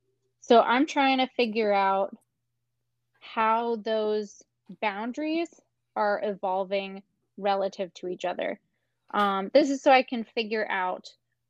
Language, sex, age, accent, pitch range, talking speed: English, female, 20-39, American, 195-240 Hz, 120 wpm